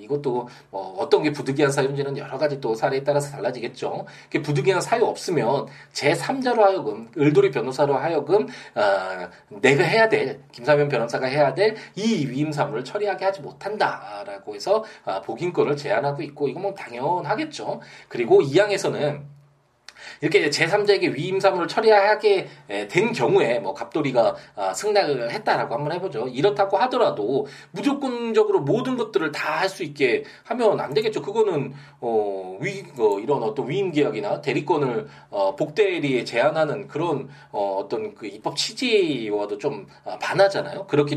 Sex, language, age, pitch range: male, Korean, 20-39, 145-225 Hz